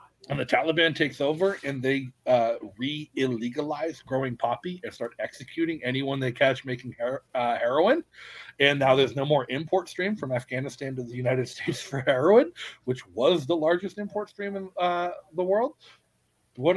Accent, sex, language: American, male, English